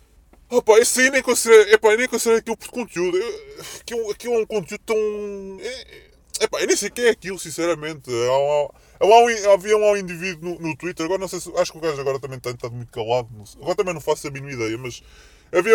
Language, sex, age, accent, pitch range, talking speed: Portuguese, female, 20-39, Brazilian, 155-225 Hz, 245 wpm